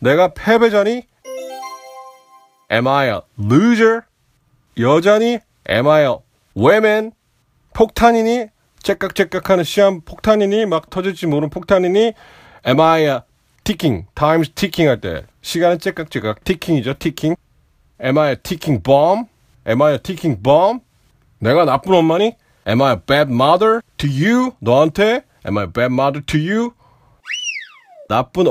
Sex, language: male, Korean